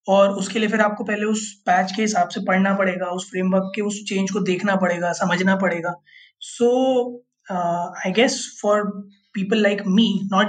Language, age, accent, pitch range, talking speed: Hindi, 20-39, native, 185-225 Hz, 175 wpm